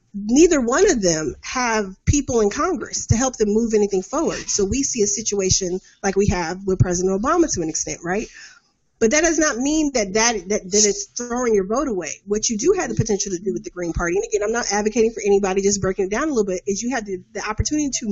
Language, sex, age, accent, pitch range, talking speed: English, female, 30-49, American, 195-250 Hz, 250 wpm